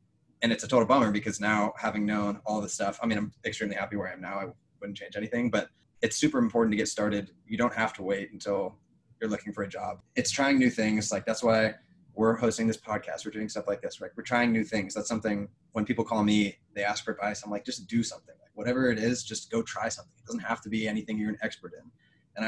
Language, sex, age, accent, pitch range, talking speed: English, male, 20-39, American, 105-115 Hz, 260 wpm